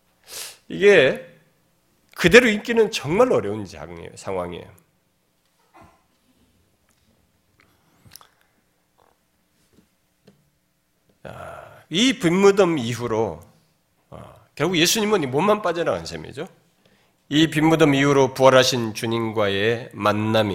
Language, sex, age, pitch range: Korean, male, 40-59, 110-180 Hz